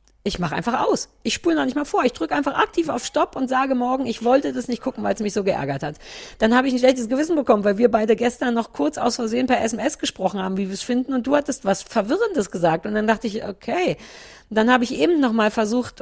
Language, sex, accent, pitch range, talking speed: German, female, German, 225-285 Hz, 265 wpm